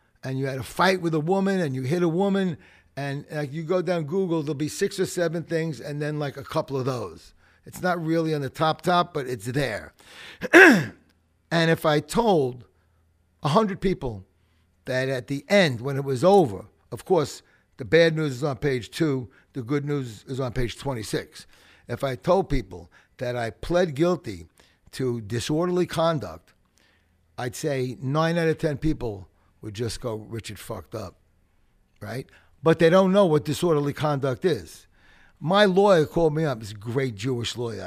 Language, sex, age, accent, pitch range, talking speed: English, male, 60-79, American, 105-155 Hz, 180 wpm